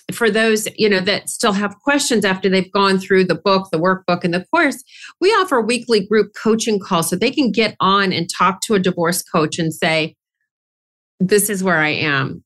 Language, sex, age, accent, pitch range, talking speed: English, female, 40-59, American, 175-225 Hz, 205 wpm